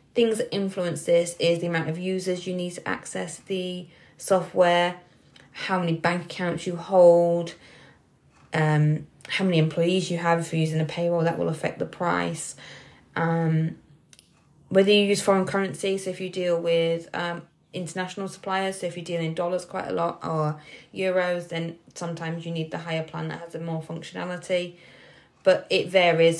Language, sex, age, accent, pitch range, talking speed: English, female, 20-39, British, 165-185 Hz, 175 wpm